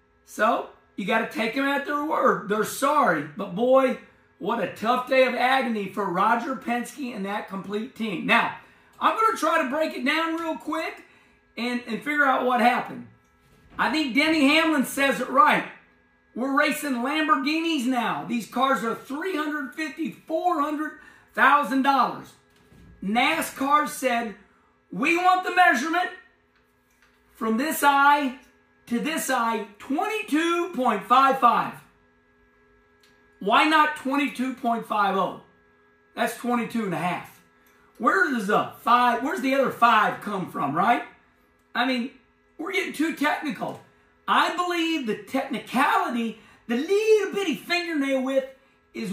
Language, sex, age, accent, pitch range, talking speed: English, male, 50-69, American, 220-300 Hz, 130 wpm